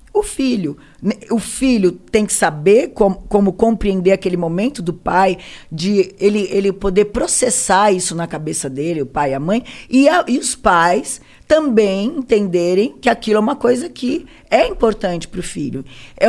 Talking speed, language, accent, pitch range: 170 wpm, Portuguese, Brazilian, 180-245 Hz